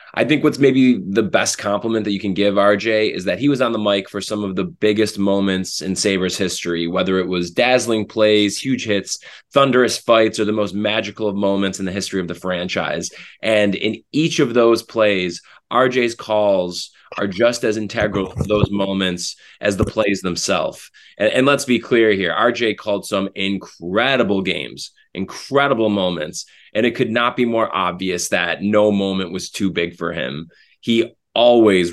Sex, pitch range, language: male, 95-125 Hz, English